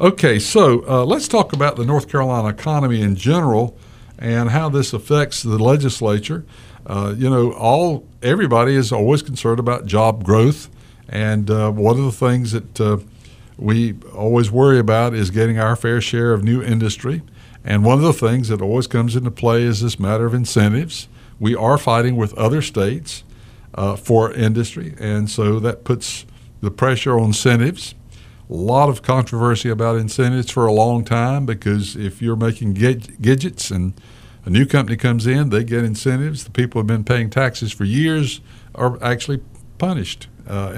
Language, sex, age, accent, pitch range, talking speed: English, male, 60-79, American, 110-130 Hz, 175 wpm